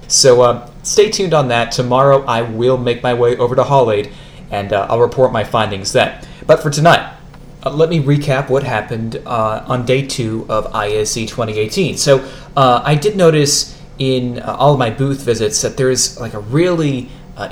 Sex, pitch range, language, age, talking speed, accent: male, 115-145 Hz, English, 20-39, 200 wpm, American